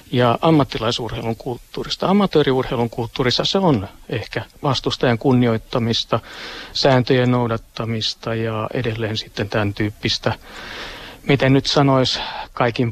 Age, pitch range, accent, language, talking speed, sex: 50-69, 115-140 Hz, native, Finnish, 100 wpm, male